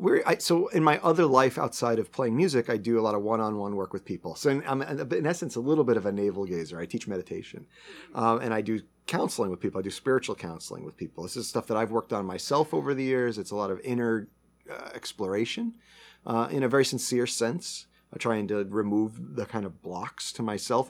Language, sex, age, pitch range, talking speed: English, male, 40-59, 95-130 Hz, 235 wpm